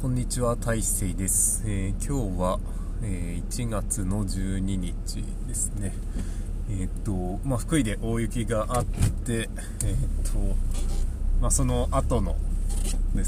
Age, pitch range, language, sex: 20-39, 95-105 Hz, Japanese, male